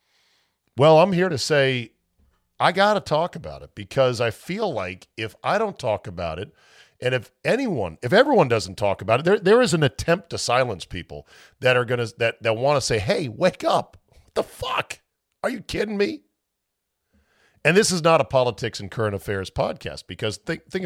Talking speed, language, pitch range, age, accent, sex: 200 wpm, English, 105-140 Hz, 50-69, American, male